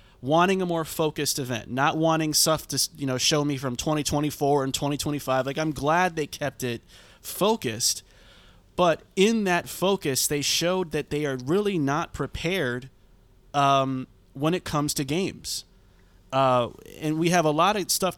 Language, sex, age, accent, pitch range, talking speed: English, male, 20-39, American, 125-165 Hz, 165 wpm